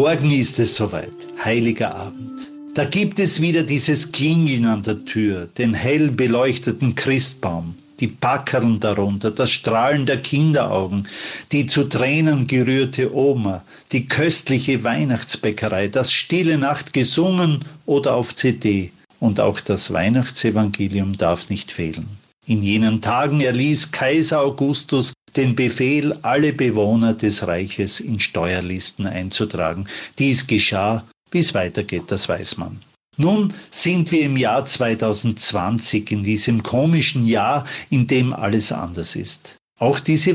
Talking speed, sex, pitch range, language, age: 130 wpm, male, 105-145 Hz, German, 40-59